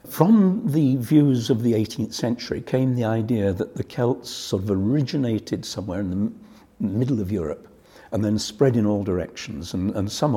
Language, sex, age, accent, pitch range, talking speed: English, male, 60-79, British, 95-125 Hz, 180 wpm